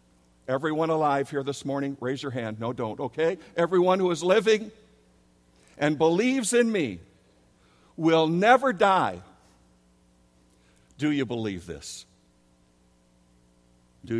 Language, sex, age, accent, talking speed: English, male, 60-79, American, 115 wpm